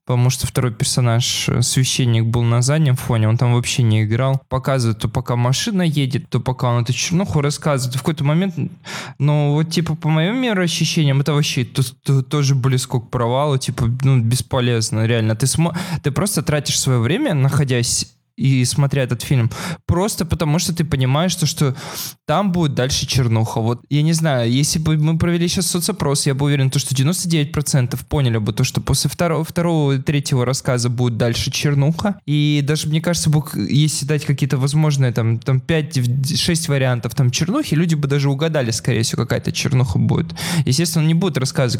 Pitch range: 125-155 Hz